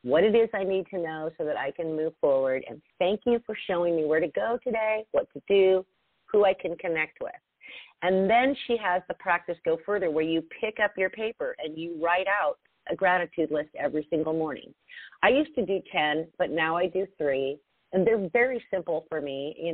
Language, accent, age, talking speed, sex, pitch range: English, American, 40-59, 220 wpm, female, 145-190 Hz